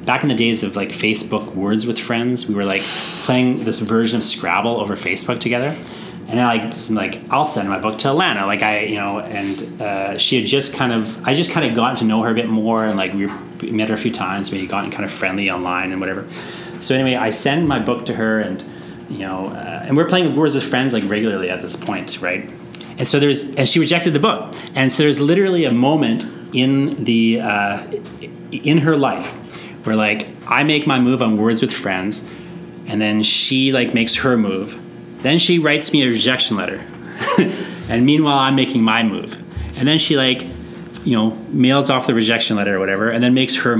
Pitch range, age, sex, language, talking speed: 105-140 Hz, 30-49, male, English, 225 wpm